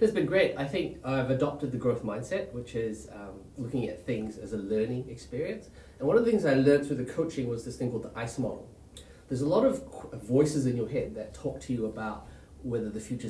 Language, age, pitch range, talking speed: English, 30-49, 115-145 Hz, 245 wpm